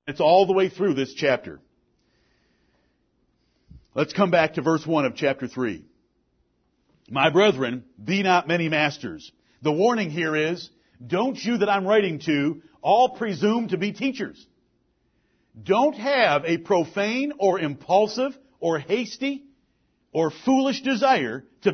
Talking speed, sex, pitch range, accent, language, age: 135 wpm, male, 160-230 Hz, American, English, 50-69